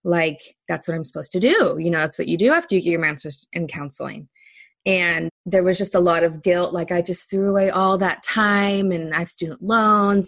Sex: female